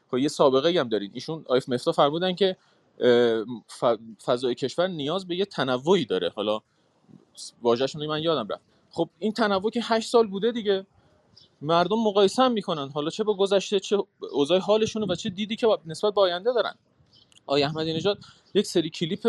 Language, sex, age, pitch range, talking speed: Persian, male, 30-49, 145-210 Hz, 175 wpm